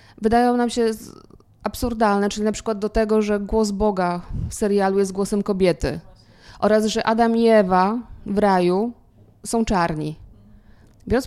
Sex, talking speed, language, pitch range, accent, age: female, 145 wpm, Polish, 190-230 Hz, native, 20-39